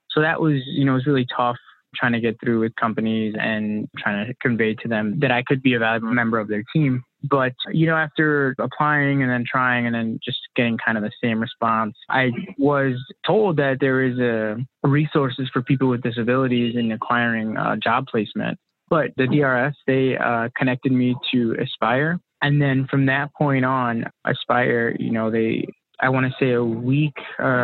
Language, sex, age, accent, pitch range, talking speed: English, male, 20-39, American, 115-135 Hz, 200 wpm